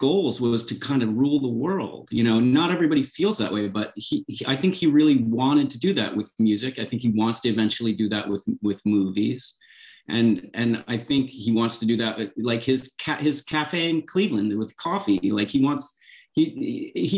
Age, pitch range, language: 30-49, 110-145 Hz, English